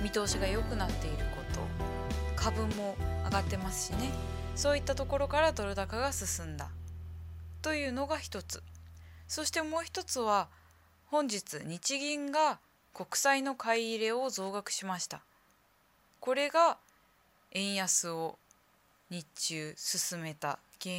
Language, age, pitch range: Japanese, 20-39, 160-260 Hz